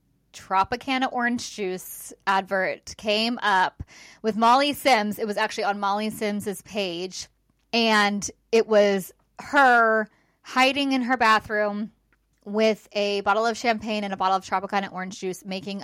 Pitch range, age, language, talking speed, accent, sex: 195-230 Hz, 20-39, English, 140 wpm, American, female